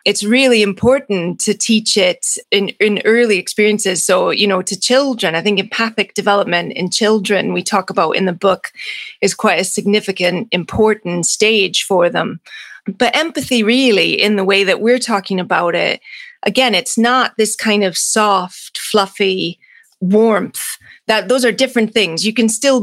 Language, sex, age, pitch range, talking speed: English, female, 30-49, 195-230 Hz, 165 wpm